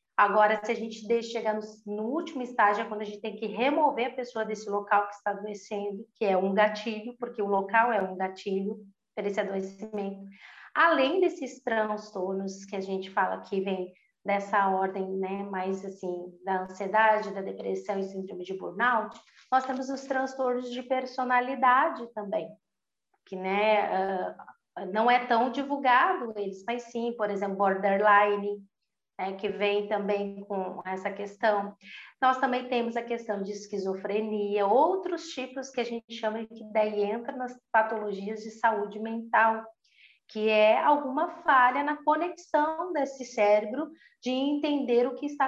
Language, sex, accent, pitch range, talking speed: Portuguese, female, Brazilian, 205-255 Hz, 160 wpm